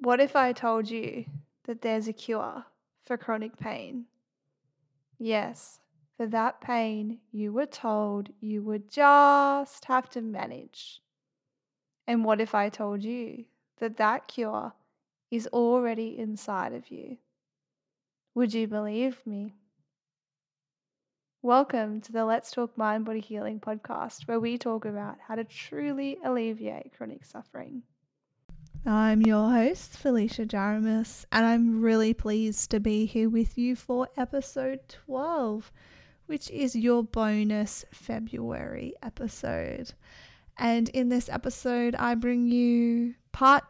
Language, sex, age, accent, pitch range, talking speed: English, female, 10-29, Australian, 210-245 Hz, 130 wpm